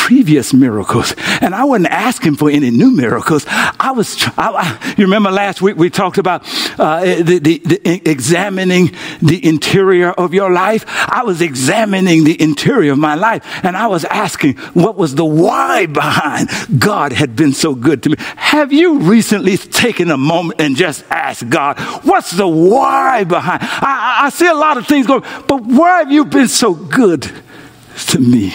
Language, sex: English, male